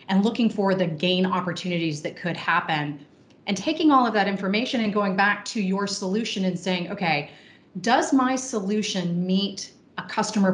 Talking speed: 170 wpm